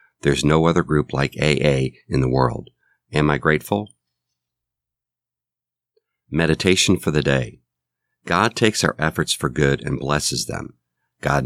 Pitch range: 65-85 Hz